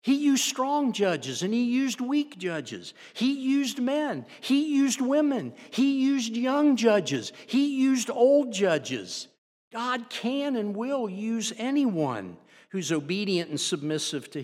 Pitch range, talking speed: 125-200 Hz, 140 wpm